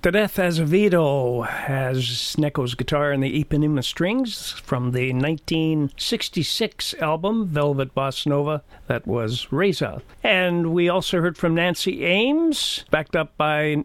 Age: 50-69